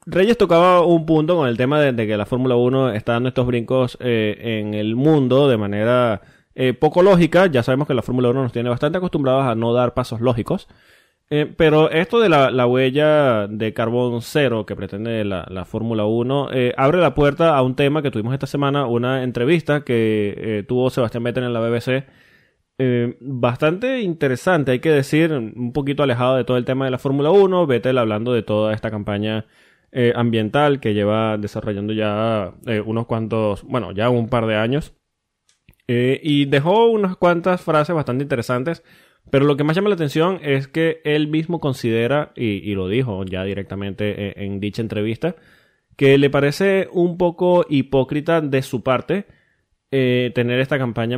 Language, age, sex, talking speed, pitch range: Spanish, 20-39, male, 185 wpm, 115-150 Hz